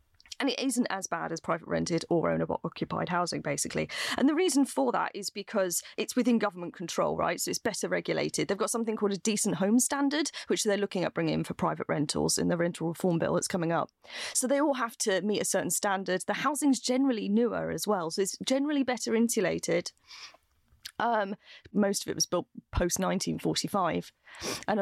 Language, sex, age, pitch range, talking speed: English, female, 30-49, 170-235 Hz, 195 wpm